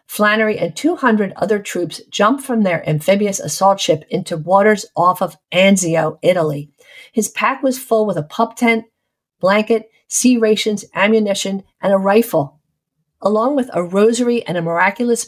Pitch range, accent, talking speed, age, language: 180-235 Hz, American, 155 wpm, 50-69, English